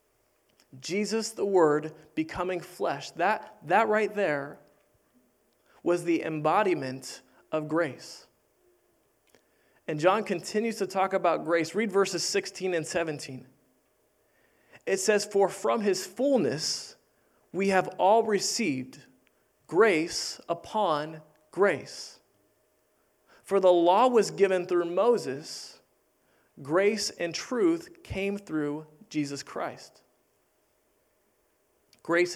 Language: English